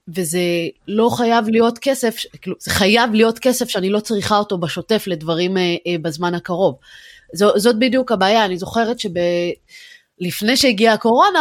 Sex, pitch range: female, 195-275 Hz